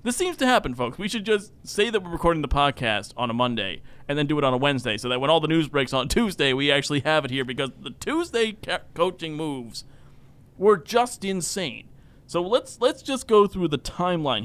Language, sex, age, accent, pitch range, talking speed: English, male, 30-49, American, 135-200 Hz, 230 wpm